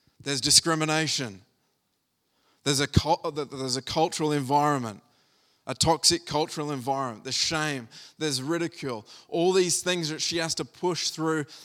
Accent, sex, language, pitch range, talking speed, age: Australian, male, English, 135-170 Hz, 130 wpm, 20-39